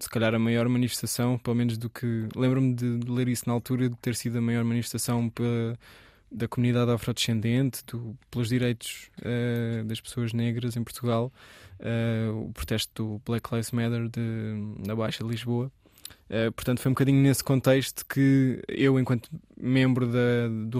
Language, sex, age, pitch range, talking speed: Portuguese, male, 20-39, 115-130 Hz, 150 wpm